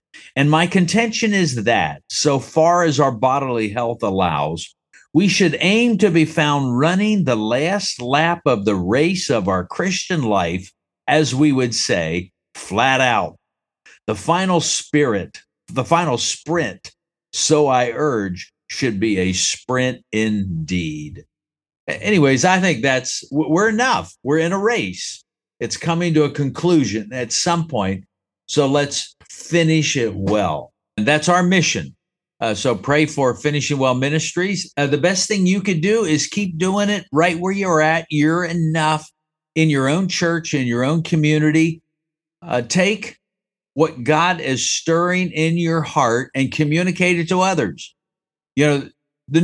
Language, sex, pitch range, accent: English, male, 130-175 Hz, American